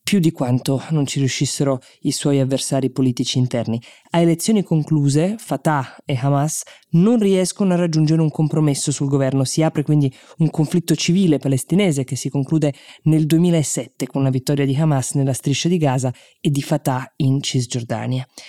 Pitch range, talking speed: 130-160 Hz, 165 wpm